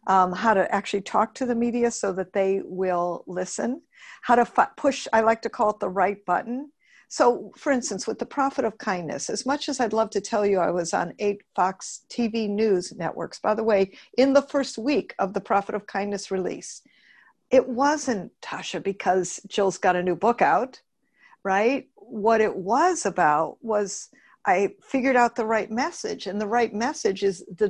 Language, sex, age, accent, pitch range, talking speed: English, female, 50-69, American, 195-250 Hz, 195 wpm